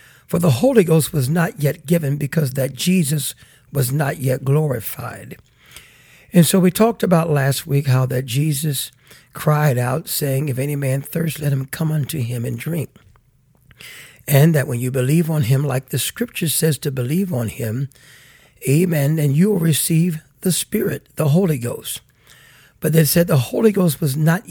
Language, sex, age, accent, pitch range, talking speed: English, male, 60-79, American, 135-175 Hz, 175 wpm